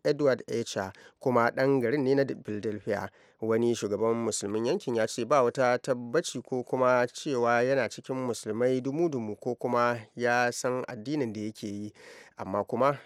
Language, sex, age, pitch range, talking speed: English, male, 30-49, 115-140 Hz, 145 wpm